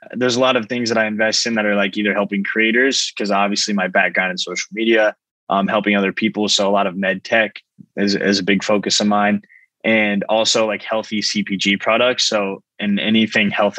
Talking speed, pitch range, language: 215 wpm, 100-115 Hz, English